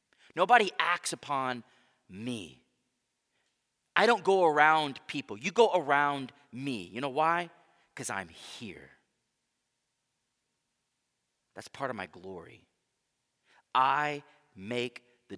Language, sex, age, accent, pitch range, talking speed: English, male, 30-49, American, 115-155 Hz, 105 wpm